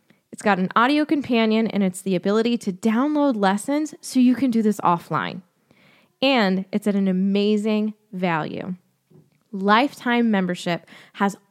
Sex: female